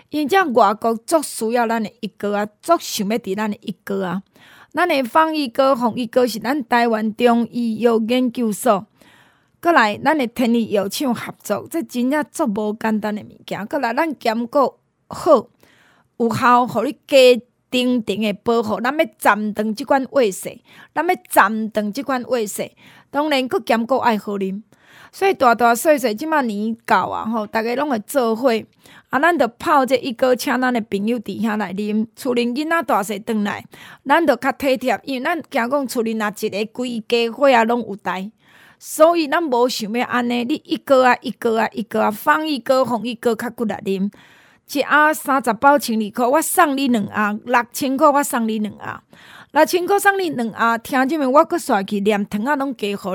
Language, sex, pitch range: Chinese, female, 220-280 Hz